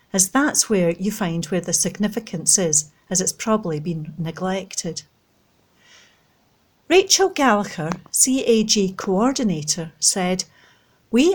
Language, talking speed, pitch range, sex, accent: English, 105 wpm, 170-225 Hz, female, British